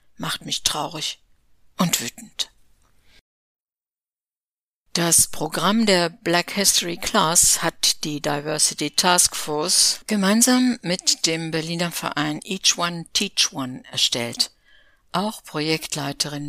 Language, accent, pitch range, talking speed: German, German, 150-180 Hz, 100 wpm